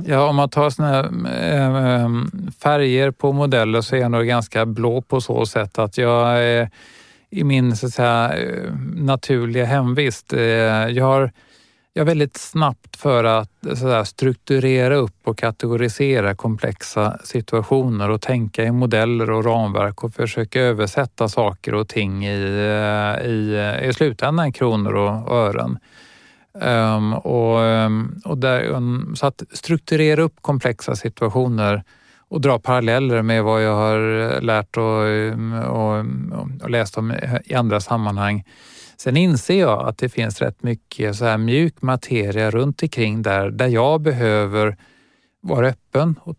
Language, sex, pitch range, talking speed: Swedish, male, 110-130 Hz, 145 wpm